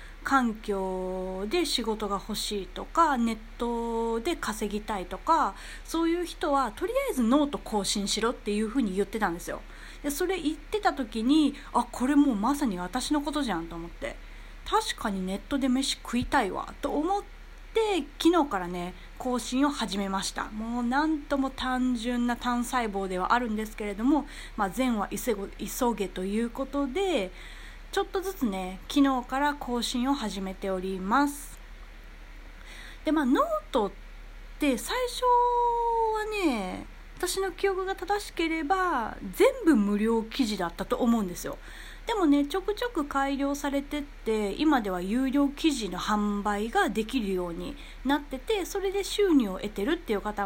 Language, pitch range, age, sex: Japanese, 215-315 Hz, 30-49, female